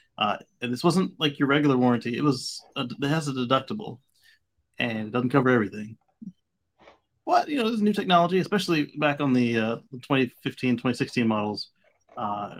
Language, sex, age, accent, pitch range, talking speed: English, male, 30-49, American, 125-170 Hz, 165 wpm